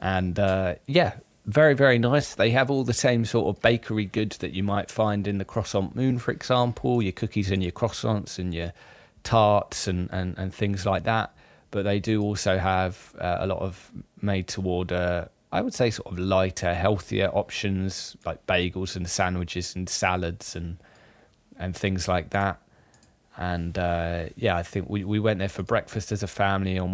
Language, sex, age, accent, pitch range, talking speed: English, male, 20-39, British, 90-110 Hz, 190 wpm